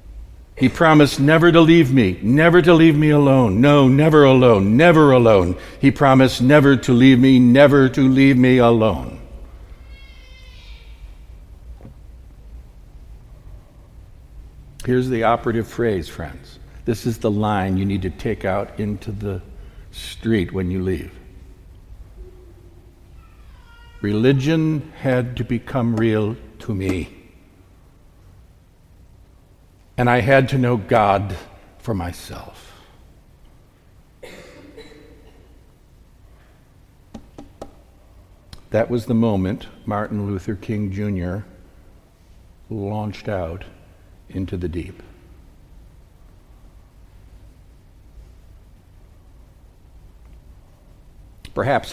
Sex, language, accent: male, English, American